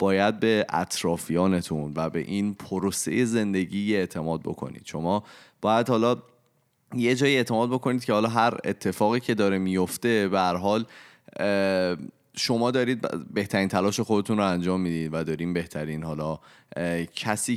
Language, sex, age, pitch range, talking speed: Persian, male, 30-49, 85-115 Hz, 130 wpm